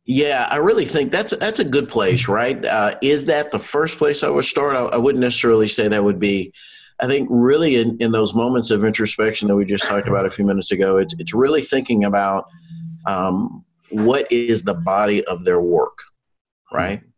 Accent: American